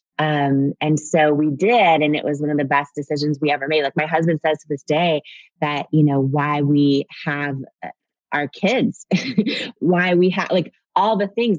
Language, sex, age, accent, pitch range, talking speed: English, female, 20-39, American, 145-170 Hz, 195 wpm